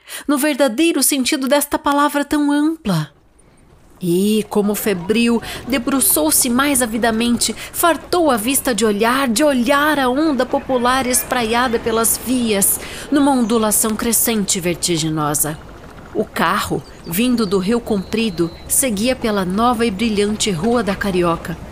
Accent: Brazilian